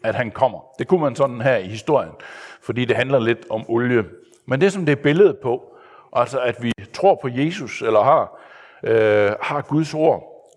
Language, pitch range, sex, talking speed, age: Danish, 115-160 Hz, male, 195 wpm, 60-79